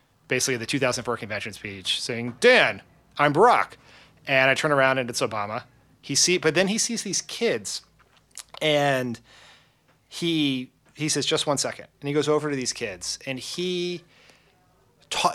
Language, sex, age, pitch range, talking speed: English, male, 30-49, 125-160 Hz, 160 wpm